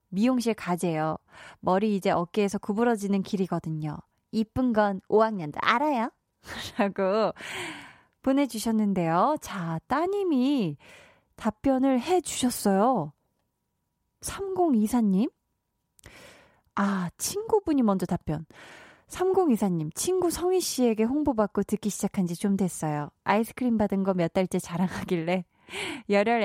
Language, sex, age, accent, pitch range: Korean, female, 20-39, native, 185-255 Hz